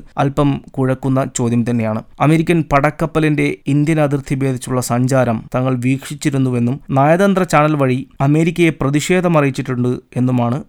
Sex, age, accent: male, 20-39, native